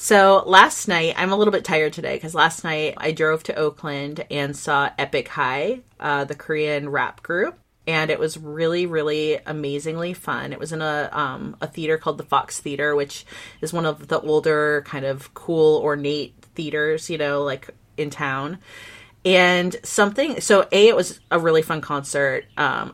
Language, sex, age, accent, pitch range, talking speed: English, female, 30-49, American, 145-180 Hz, 185 wpm